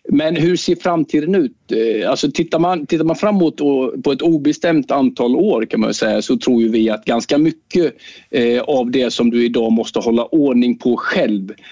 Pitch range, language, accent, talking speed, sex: 115-130 Hz, Swedish, native, 195 wpm, male